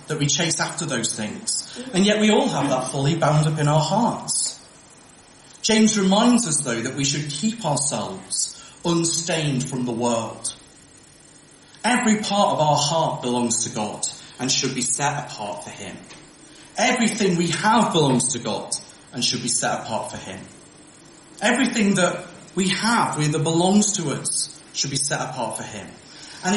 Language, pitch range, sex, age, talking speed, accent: English, 130-195 Hz, male, 30-49, 165 wpm, British